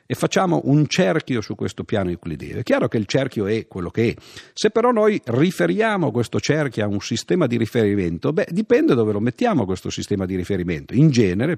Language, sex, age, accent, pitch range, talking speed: Italian, male, 50-69, native, 95-130 Hz, 200 wpm